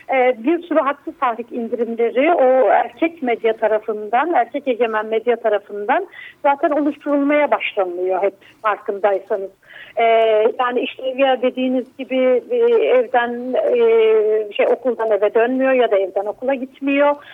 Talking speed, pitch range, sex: 115 wpm, 240-290 Hz, female